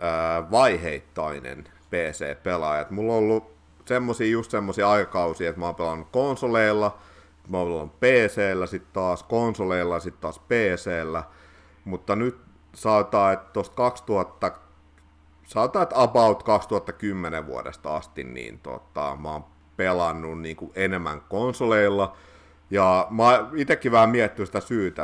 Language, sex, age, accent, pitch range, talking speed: Finnish, male, 50-69, native, 80-105 Hz, 125 wpm